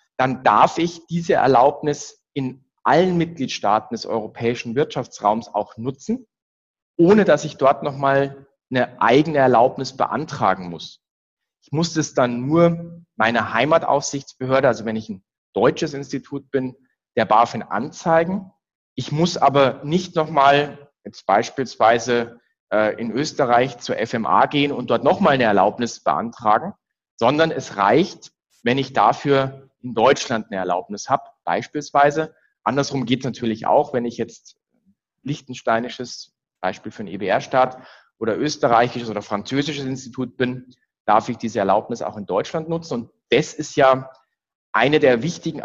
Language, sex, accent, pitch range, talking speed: English, male, German, 115-145 Hz, 135 wpm